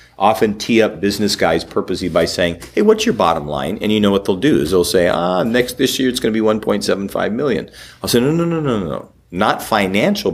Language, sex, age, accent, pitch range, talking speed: English, male, 40-59, American, 90-115 Hz, 250 wpm